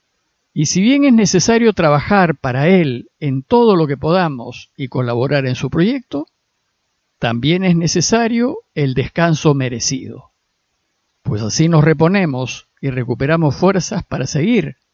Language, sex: Spanish, male